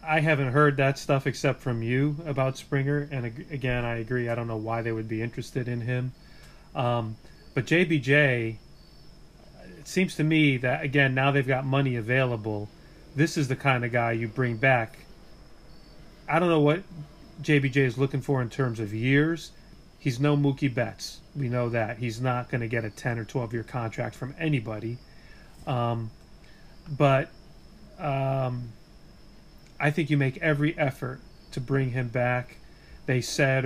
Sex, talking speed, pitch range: male, 165 wpm, 125-150 Hz